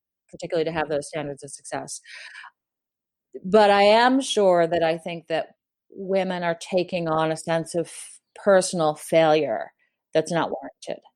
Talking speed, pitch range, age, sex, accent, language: 145 wpm, 165-220 Hz, 40-59, female, American, English